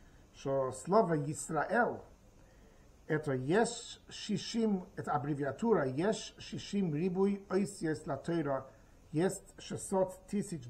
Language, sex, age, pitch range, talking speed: Russian, male, 50-69, 150-205 Hz, 75 wpm